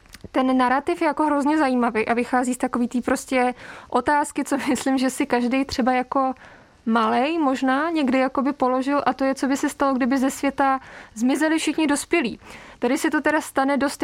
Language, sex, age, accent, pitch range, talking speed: Czech, female, 20-39, native, 245-275 Hz, 190 wpm